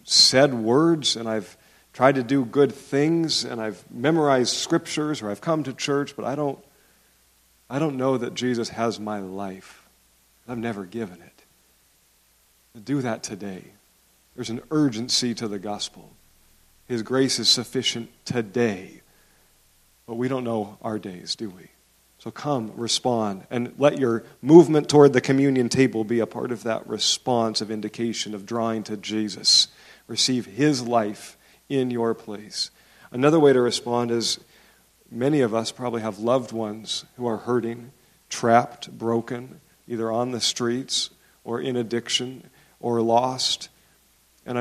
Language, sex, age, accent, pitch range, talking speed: English, male, 50-69, American, 110-130 Hz, 150 wpm